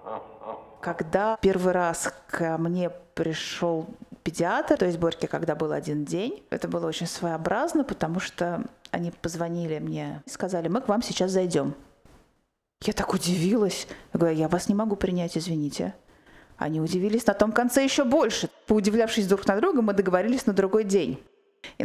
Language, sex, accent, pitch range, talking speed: Russian, female, native, 170-225 Hz, 160 wpm